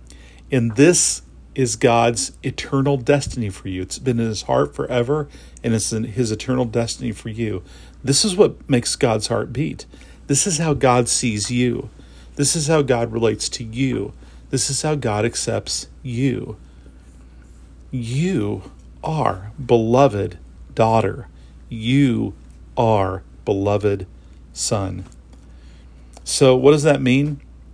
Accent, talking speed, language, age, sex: American, 130 wpm, English, 40-59, male